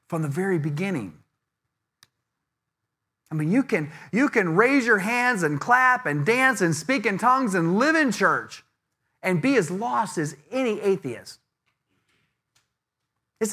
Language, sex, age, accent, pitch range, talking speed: English, male, 40-59, American, 175-245 Hz, 145 wpm